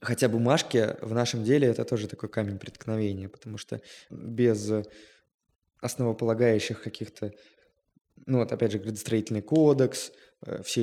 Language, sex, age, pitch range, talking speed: Russian, male, 20-39, 110-145 Hz, 130 wpm